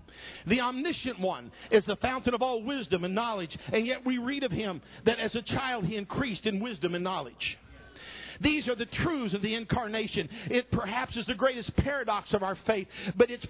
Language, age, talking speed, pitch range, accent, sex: English, 50-69, 200 wpm, 205-260 Hz, American, male